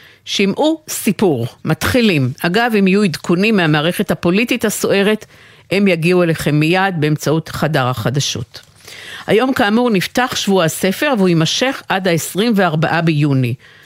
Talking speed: 115 wpm